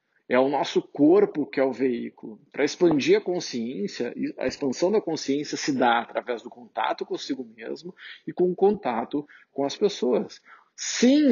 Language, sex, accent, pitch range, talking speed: Portuguese, male, Brazilian, 125-195 Hz, 170 wpm